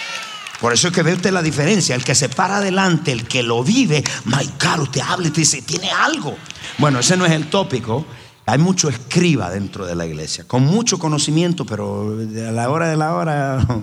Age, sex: 50-69, male